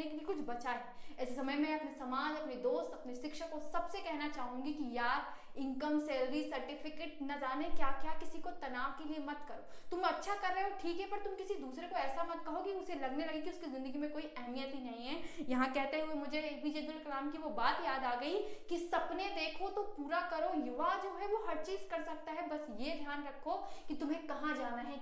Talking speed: 235 wpm